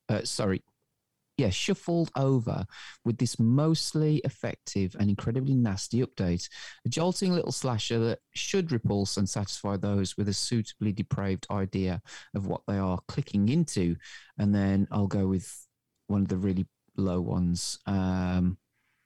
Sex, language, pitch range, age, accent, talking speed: male, English, 100-140 Hz, 30-49, British, 145 wpm